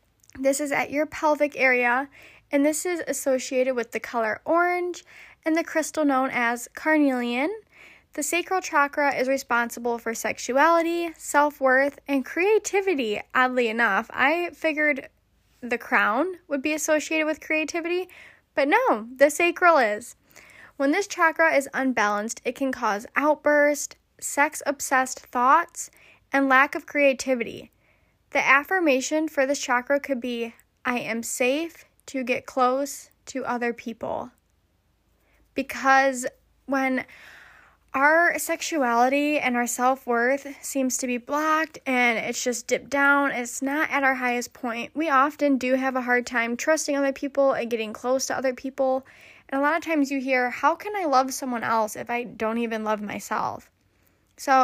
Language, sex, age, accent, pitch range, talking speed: English, female, 10-29, American, 245-300 Hz, 150 wpm